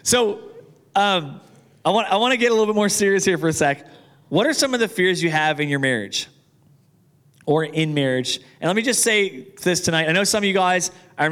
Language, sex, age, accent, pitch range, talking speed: English, male, 30-49, American, 150-190 Hz, 235 wpm